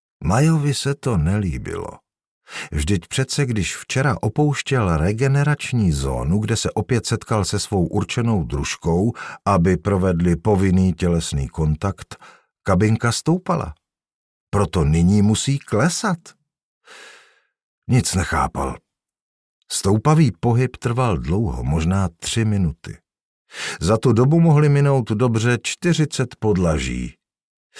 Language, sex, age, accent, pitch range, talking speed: Czech, male, 50-69, native, 90-125 Hz, 100 wpm